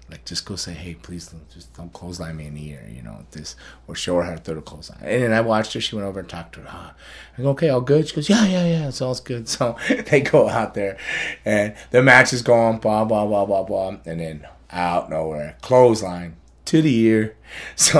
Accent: American